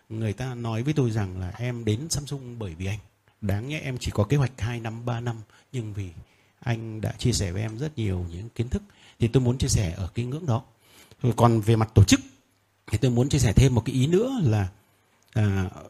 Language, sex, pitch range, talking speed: Vietnamese, male, 110-135 Hz, 240 wpm